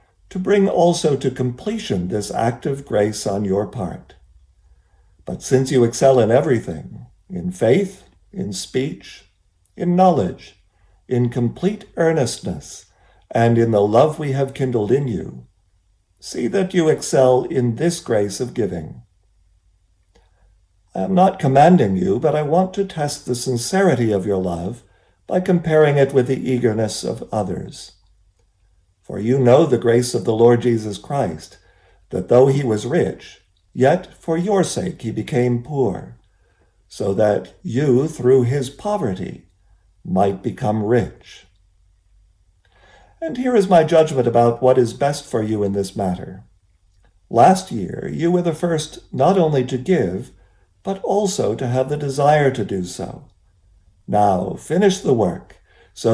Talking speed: 145 wpm